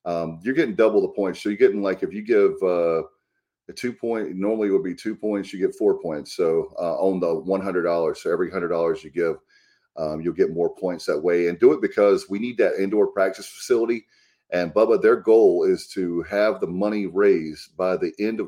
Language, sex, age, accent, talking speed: English, male, 30-49, American, 220 wpm